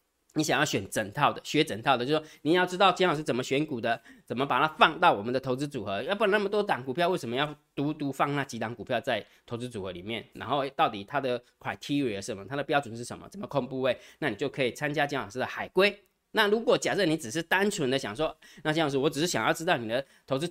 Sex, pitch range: male, 120-170 Hz